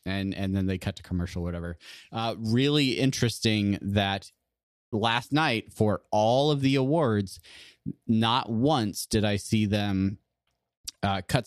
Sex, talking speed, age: male, 145 wpm, 20-39